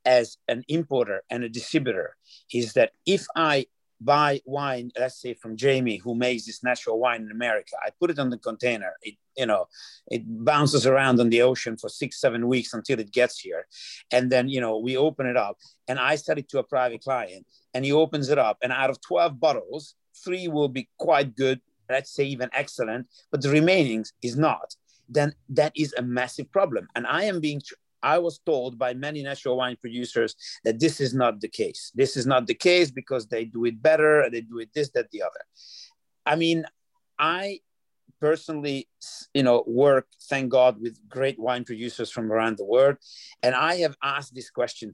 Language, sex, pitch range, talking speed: English, male, 120-150 Hz, 200 wpm